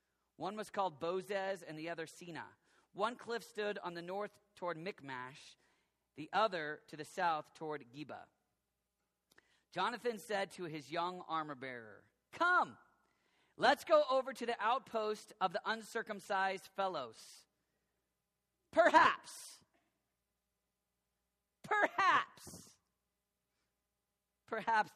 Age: 40-59